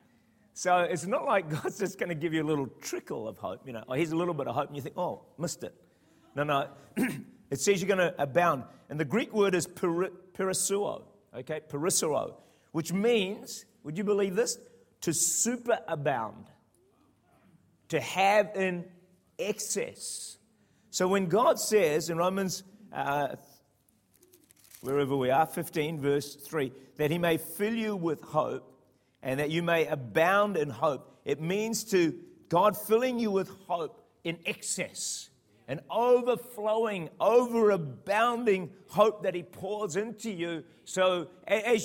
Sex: male